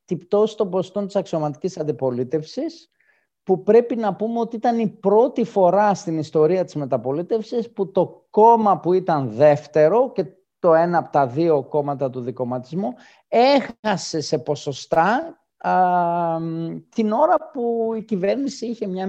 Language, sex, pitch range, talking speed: Greek, male, 140-200 Hz, 140 wpm